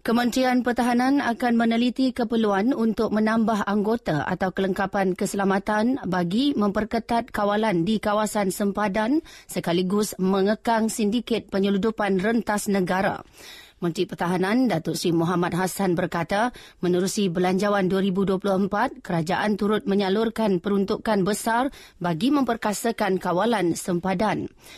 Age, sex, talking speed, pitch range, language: 30-49, female, 100 wpm, 190-230 Hz, English